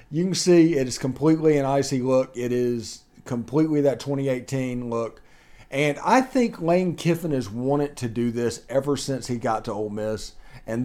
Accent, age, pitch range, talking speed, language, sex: American, 40-59, 115-145 Hz, 185 wpm, English, male